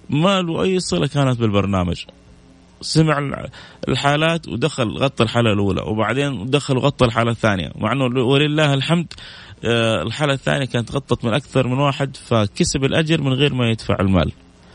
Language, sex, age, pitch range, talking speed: Arabic, male, 30-49, 105-140 Hz, 145 wpm